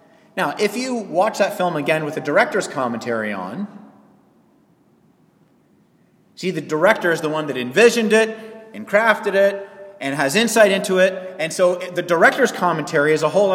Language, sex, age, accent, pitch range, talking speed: English, male, 30-49, American, 145-205 Hz, 165 wpm